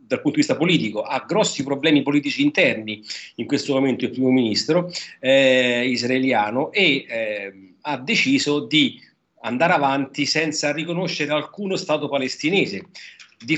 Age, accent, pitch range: 40-59, native, 125-155 Hz